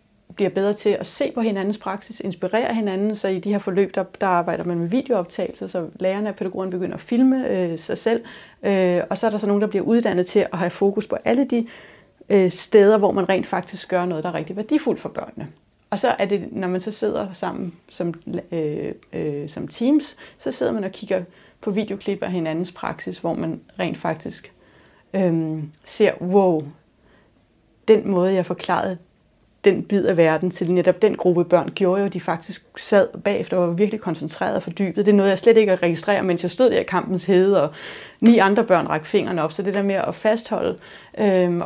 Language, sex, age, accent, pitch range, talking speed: Danish, female, 30-49, native, 175-205 Hz, 210 wpm